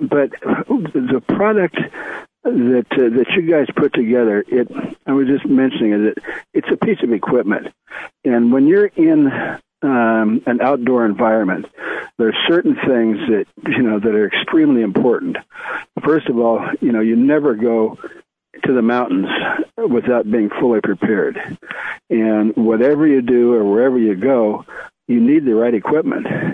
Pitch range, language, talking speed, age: 110-135 Hz, English, 150 wpm, 60-79